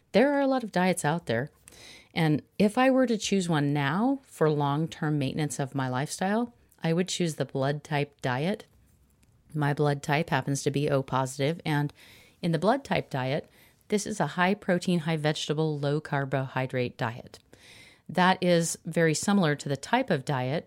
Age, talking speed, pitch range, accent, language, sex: 40-59, 170 wpm, 140-170 Hz, American, English, female